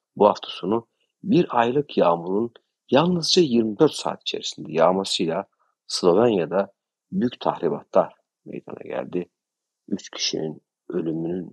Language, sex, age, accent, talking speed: Turkish, male, 50-69, native, 100 wpm